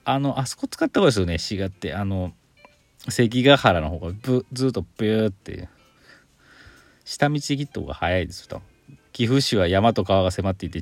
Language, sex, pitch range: Japanese, male, 90-125 Hz